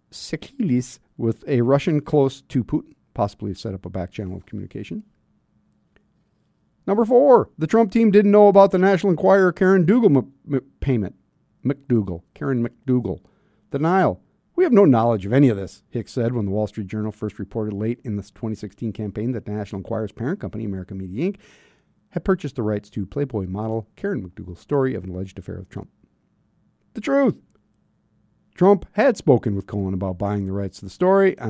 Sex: male